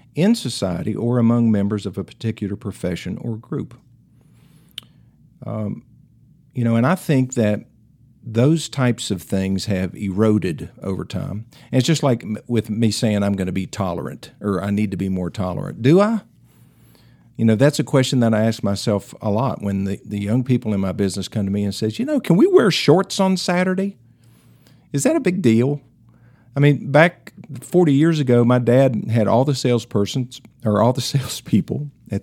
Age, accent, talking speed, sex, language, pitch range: 50-69, American, 190 wpm, male, English, 105-140 Hz